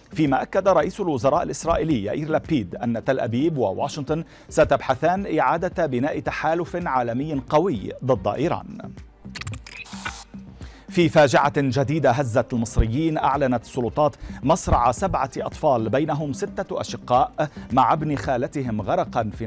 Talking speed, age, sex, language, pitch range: 115 wpm, 40-59, male, Arabic, 115-150 Hz